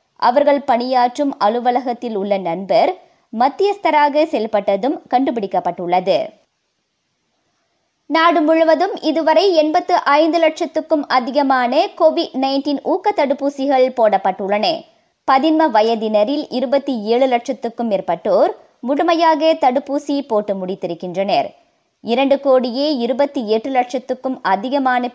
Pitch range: 220-315 Hz